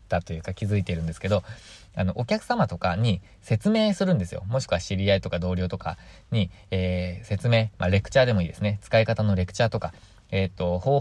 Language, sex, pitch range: Japanese, male, 95-115 Hz